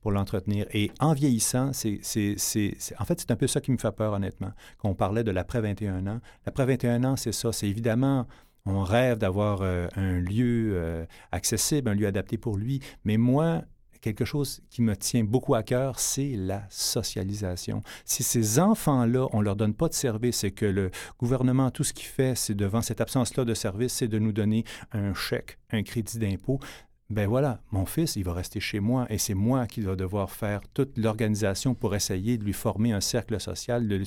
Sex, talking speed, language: male, 210 wpm, French